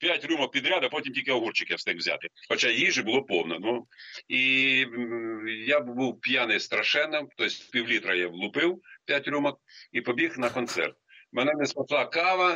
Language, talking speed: Russian, 165 wpm